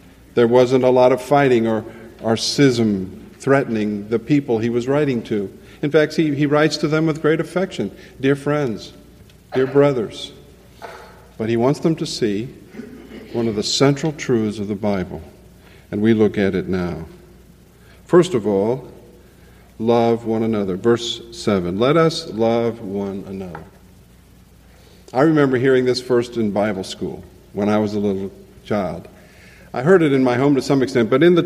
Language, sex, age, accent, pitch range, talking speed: English, male, 50-69, American, 110-150 Hz, 170 wpm